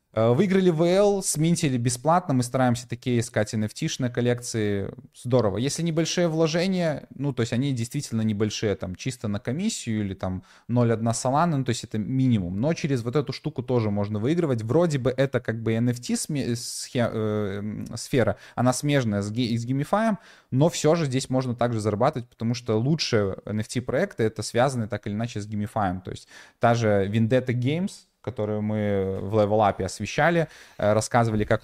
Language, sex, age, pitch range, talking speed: Russian, male, 20-39, 105-135 Hz, 155 wpm